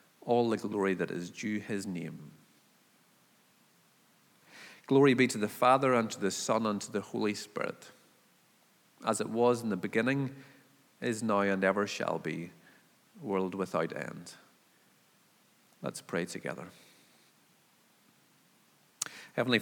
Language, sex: English, male